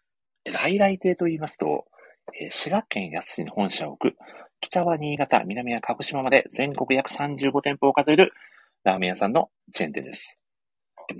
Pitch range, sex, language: 115-170 Hz, male, Japanese